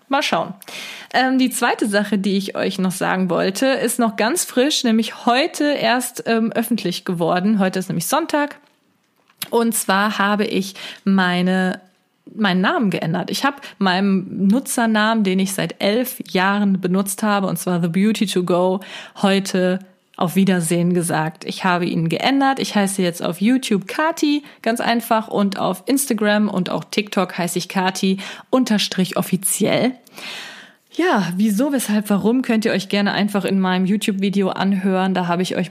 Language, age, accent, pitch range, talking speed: German, 30-49, German, 185-225 Hz, 155 wpm